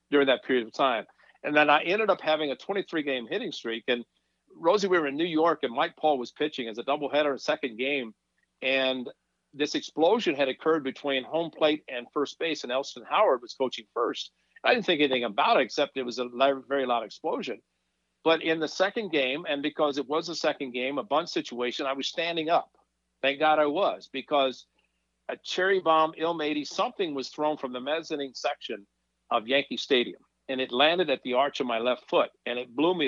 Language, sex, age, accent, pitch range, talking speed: English, male, 50-69, American, 125-150 Hz, 210 wpm